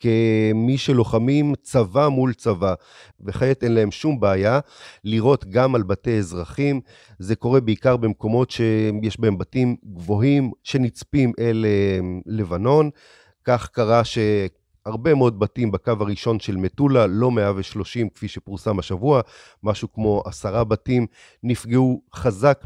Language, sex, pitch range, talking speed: Hebrew, male, 105-125 Hz, 125 wpm